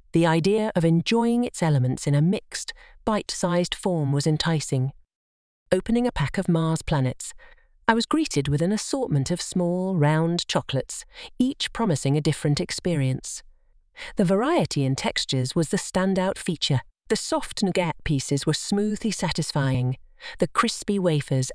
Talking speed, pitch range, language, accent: 145 wpm, 145-220 Hz, English, British